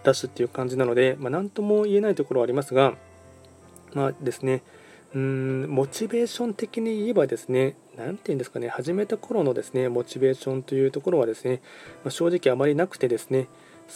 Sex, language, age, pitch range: male, Japanese, 20-39, 125-160 Hz